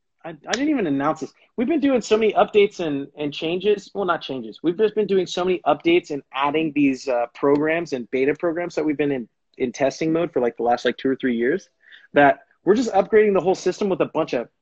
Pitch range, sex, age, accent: 145-210 Hz, male, 30-49, American